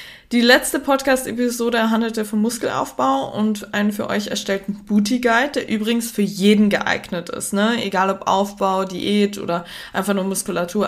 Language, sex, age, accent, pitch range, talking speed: German, female, 20-39, German, 195-245 Hz, 150 wpm